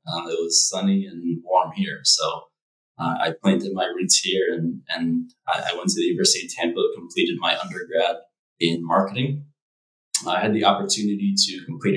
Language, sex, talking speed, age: English, male, 175 wpm, 20-39